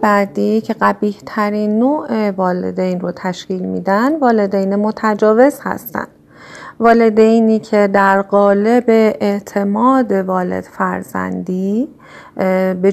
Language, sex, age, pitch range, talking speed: Persian, female, 30-49, 185-225 Hz, 95 wpm